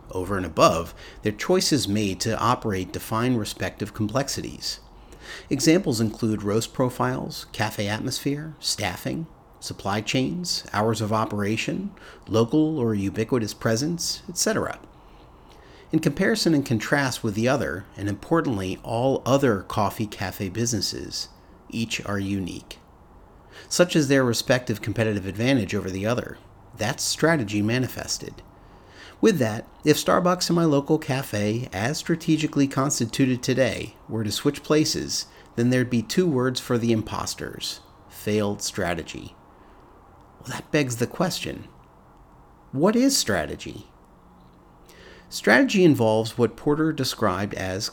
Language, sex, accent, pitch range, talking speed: English, male, American, 105-145 Hz, 120 wpm